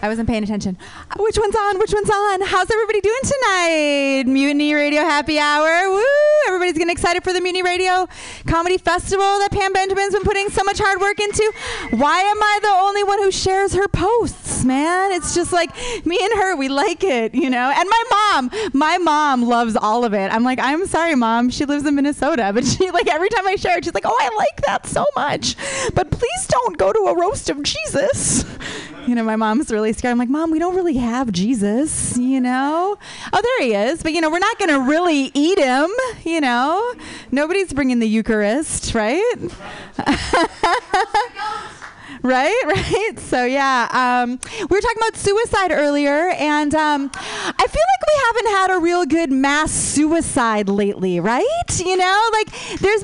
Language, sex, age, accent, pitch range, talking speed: English, female, 30-49, American, 260-390 Hz, 195 wpm